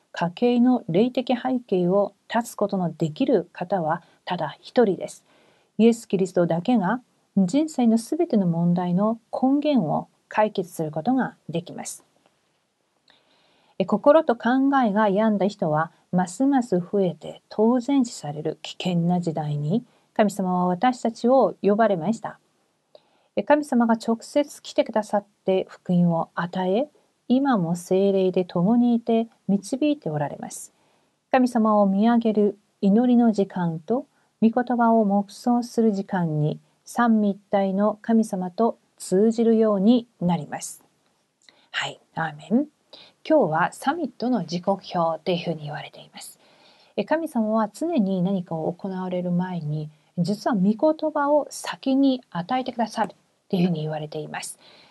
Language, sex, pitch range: Korean, female, 180-240 Hz